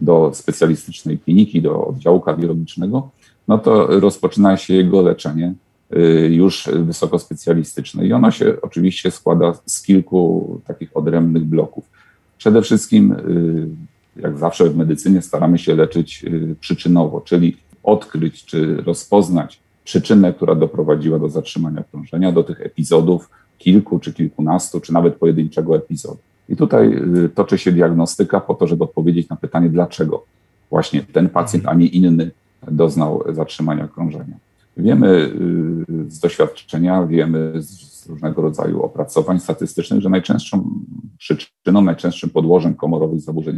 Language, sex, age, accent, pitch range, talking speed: Polish, male, 40-59, native, 80-90 Hz, 125 wpm